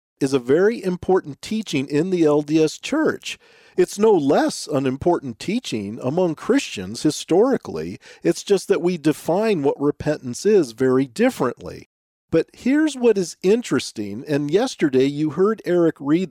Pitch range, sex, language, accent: 135-215 Hz, male, English, American